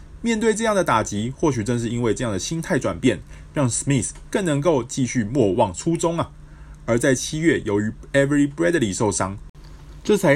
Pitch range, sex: 85-130 Hz, male